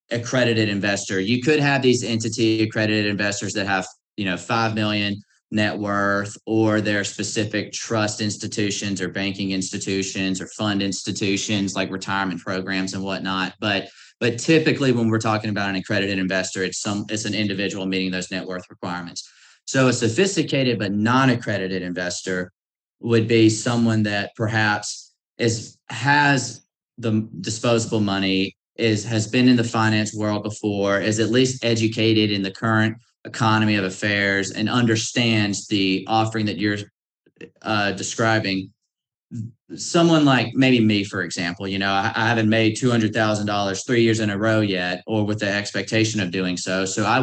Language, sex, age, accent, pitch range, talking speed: English, male, 30-49, American, 95-115 Hz, 155 wpm